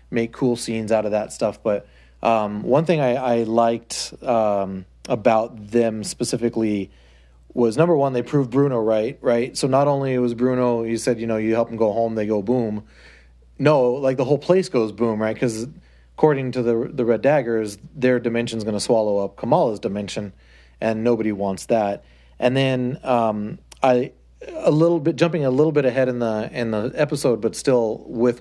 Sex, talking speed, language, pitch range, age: male, 190 wpm, English, 110-130 Hz, 30-49